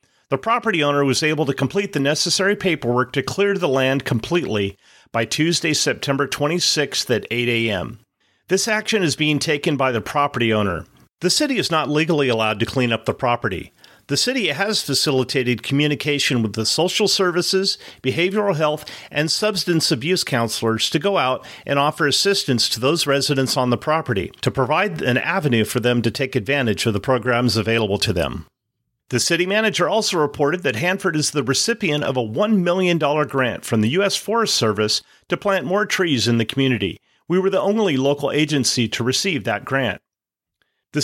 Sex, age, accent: male, 40-59, American